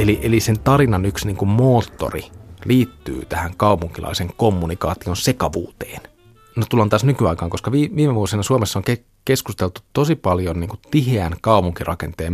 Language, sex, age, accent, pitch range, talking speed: Finnish, male, 30-49, native, 90-110 Hz, 135 wpm